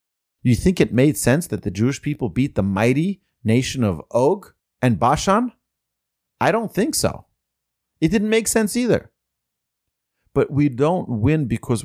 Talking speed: 155 wpm